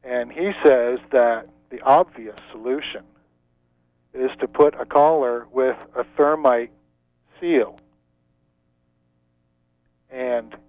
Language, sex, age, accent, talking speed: English, male, 50-69, American, 95 wpm